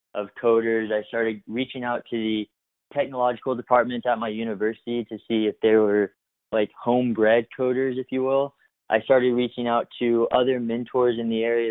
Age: 20-39